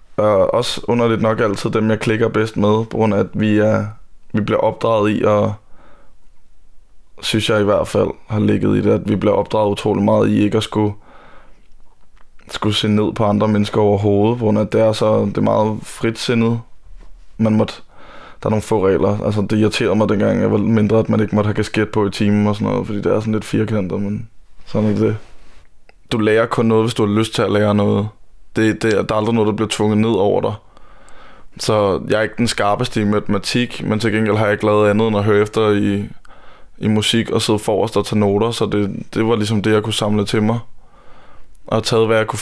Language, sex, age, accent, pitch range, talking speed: Danish, male, 20-39, native, 105-110 Hz, 230 wpm